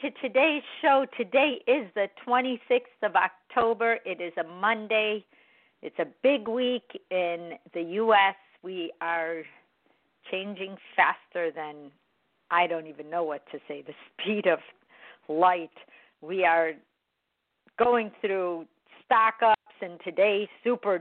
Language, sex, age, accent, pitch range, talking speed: English, female, 50-69, American, 175-230 Hz, 130 wpm